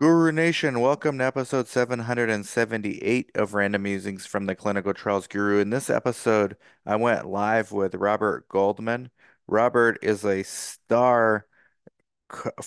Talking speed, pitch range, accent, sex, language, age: 135 wpm, 100-115 Hz, American, male, English, 30-49